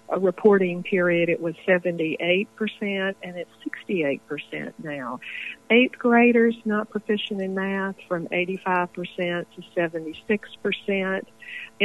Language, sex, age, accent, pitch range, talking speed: English, female, 60-79, American, 165-200 Hz, 100 wpm